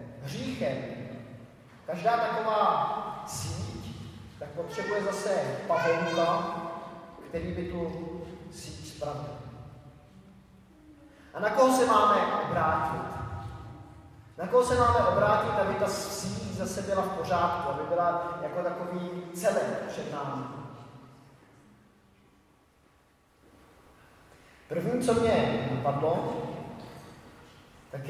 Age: 30-49